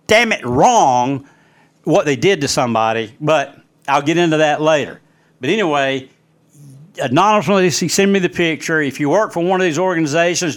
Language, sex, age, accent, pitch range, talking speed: English, male, 60-79, American, 145-205 Hz, 165 wpm